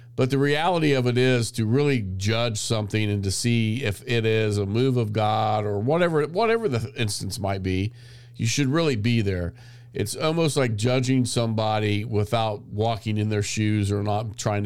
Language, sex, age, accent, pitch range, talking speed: English, male, 50-69, American, 100-120 Hz, 185 wpm